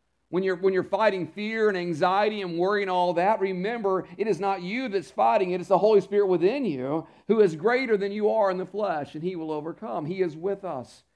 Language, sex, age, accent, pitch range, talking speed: English, male, 50-69, American, 155-210 Hz, 230 wpm